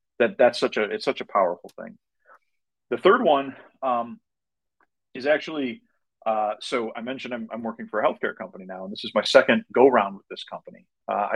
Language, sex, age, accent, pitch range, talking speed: English, male, 40-59, American, 100-125 Hz, 200 wpm